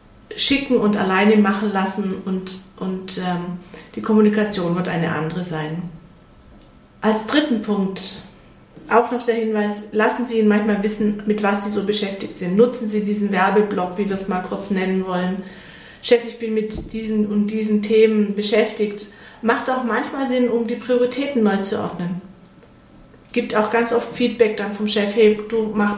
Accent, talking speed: German, 170 wpm